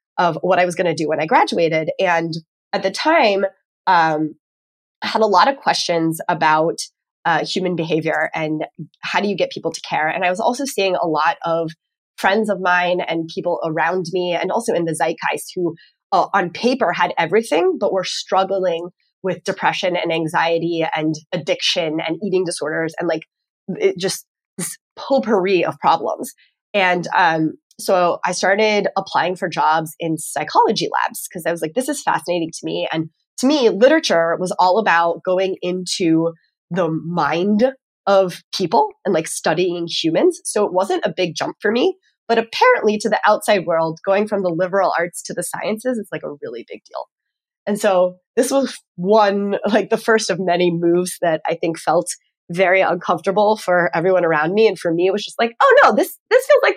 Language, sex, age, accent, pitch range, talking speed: English, female, 20-39, American, 165-210 Hz, 185 wpm